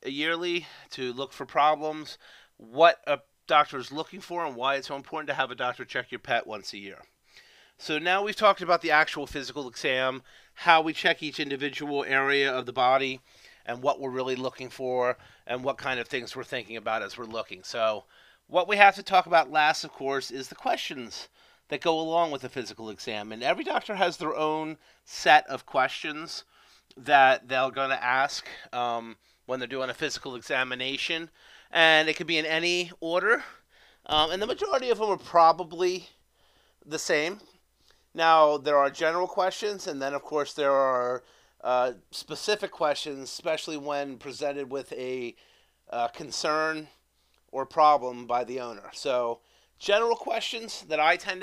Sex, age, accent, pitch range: male, 30-49, American, 130-165 Hz